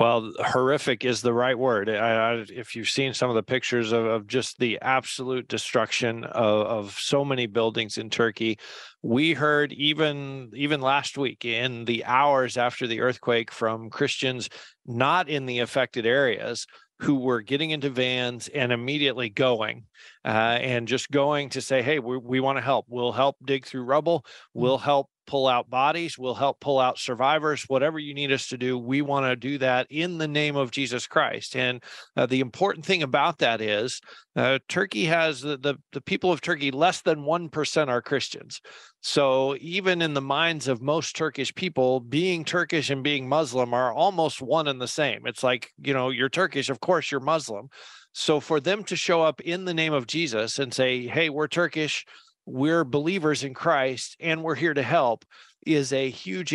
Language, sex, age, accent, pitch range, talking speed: English, male, 40-59, American, 125-155 Hz, 190 wpm